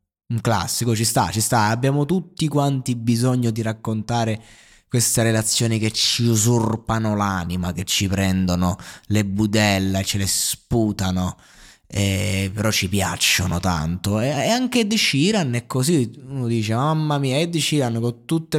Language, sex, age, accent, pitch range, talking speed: Italian, male, 20-39, native, 105-140 Hz, 155 wpm